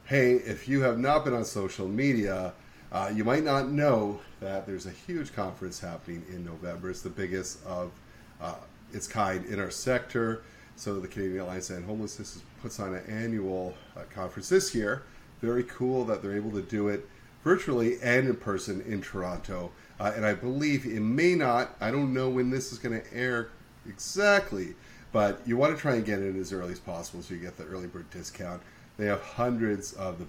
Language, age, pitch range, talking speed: English, 30-49, 90-115 Hz, 200 wpm